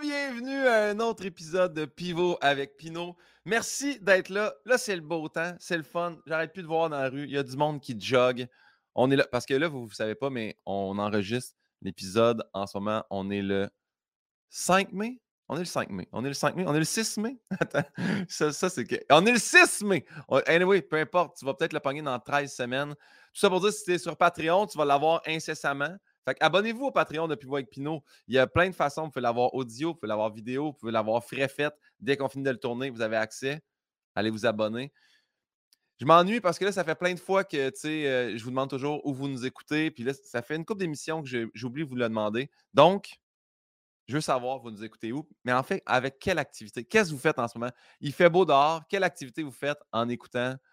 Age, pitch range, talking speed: 30-49, 125-175 Hz, 250 wpm